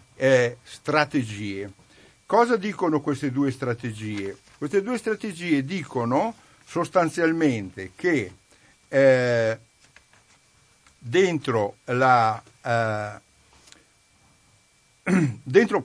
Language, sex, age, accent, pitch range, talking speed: Italian, male, 60-79, native, 125-180 Hz, 60 wpm